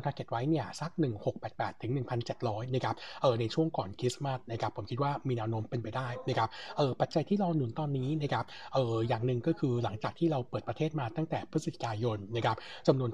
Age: 60-79